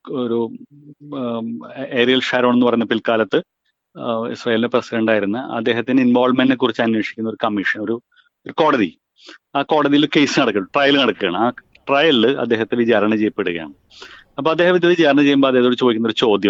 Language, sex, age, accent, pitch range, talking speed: Malayalam, male, 30-49, native, 115-150 Hz, 115 wpm